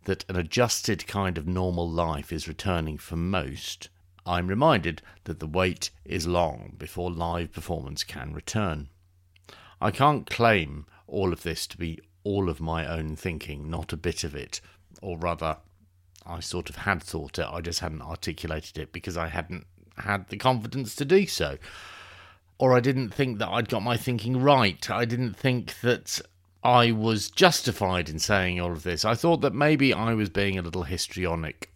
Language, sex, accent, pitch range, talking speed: English, male, British, 80-100 Hz, 180 wpm